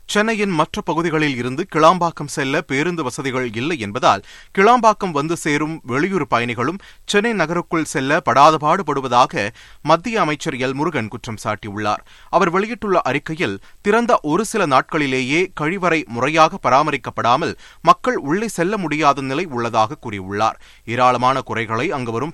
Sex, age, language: male, 30-49, Tamil